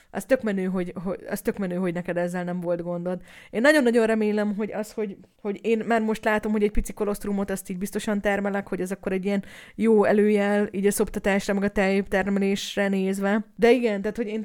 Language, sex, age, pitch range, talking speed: Hungarian, female, 20-39, 180-220 Hz, 215 wpm